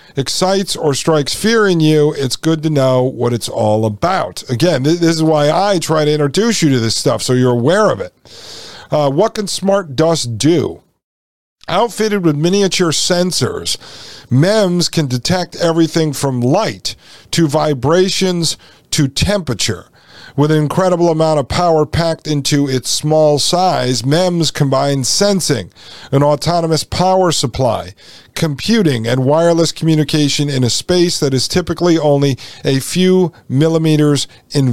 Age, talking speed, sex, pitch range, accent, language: 50-69, 145 wpm, male, 130-170 Hz, American, English